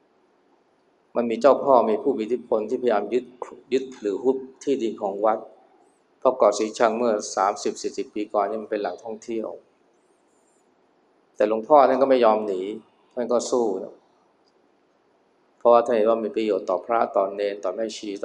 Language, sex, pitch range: Thai, male, 110-135 Hz